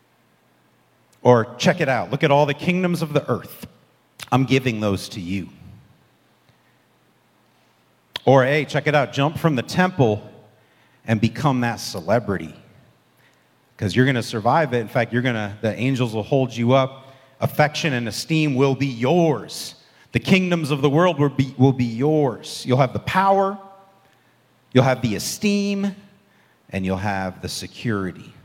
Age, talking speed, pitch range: 40-59, 160 wpm, 105-145 Hz